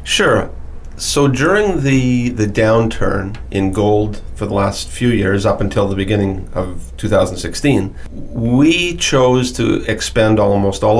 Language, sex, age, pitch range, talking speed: English, male, 40-59, 95-115 Hz, 135 wpm